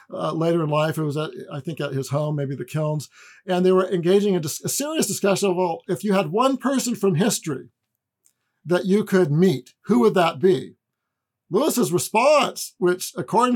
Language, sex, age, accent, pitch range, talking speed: English, male, 50-69, American, 160-210 Hz, 200 wpm